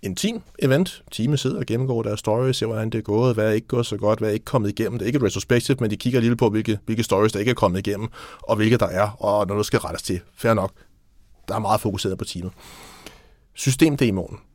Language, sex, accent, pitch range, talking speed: Danish, male, native, 105-130 Hz, 250 wpm